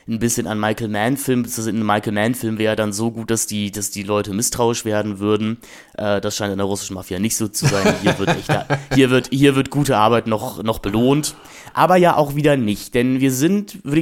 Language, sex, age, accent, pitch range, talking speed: German, male, 30-49, German, 105-140 Hz, 225 wpm